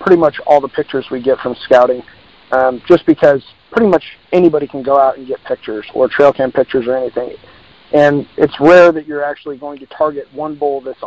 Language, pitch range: English, 130-155 Hz